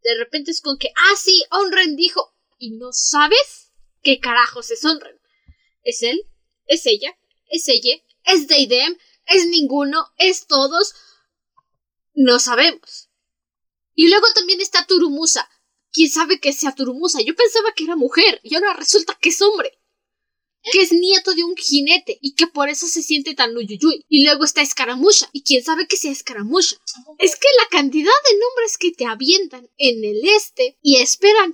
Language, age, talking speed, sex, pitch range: Spanish, 10-29, 170 wpm, female, 275-405 Hz